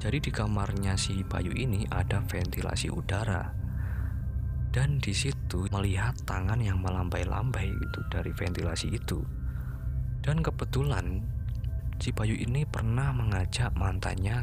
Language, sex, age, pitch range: Indonesian, male, 20-39, 95-115 Hz